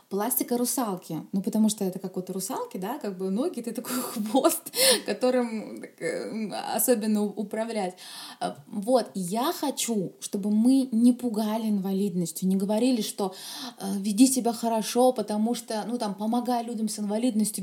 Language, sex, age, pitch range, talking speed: Russian, female, 20-39, 205-250 Hz, 140 wpm